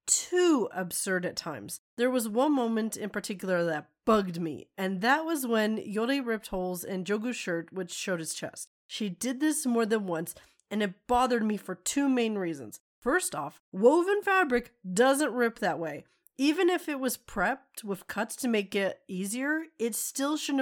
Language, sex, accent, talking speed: English, female, American, 185 wpm